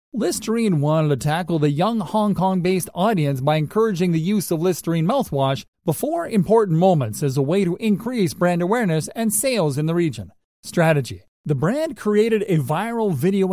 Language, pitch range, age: English, 155-210 Hz, 40-59